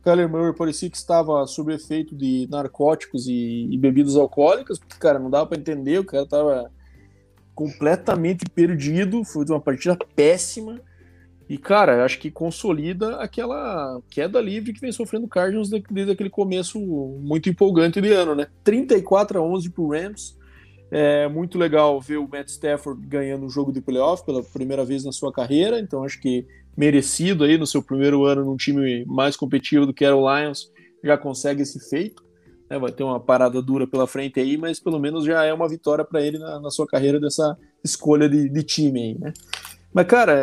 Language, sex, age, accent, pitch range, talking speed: Portuguese, male, 20-39, Brazilian, 135-180 Hz, 185 wpm